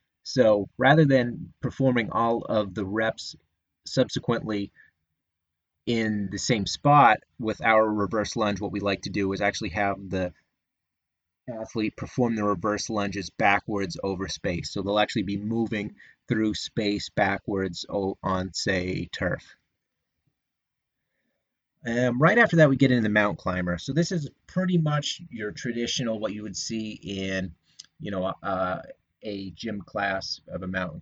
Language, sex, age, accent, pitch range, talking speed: English, male, 30-49, American, 95-130 Hz, 145 wpm